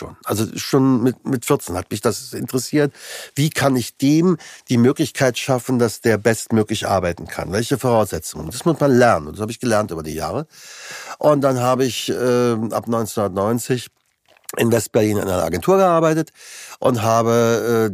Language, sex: German, male